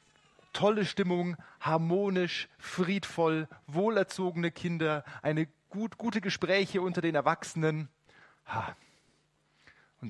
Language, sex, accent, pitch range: German, male, German, 140-180 Hz